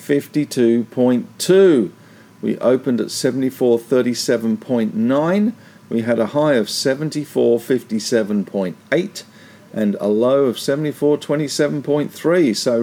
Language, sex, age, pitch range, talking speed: English, male, 50-69, 115-150 Hz, 75 wpm